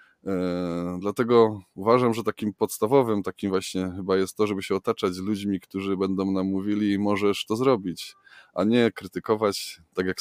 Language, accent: Polish, native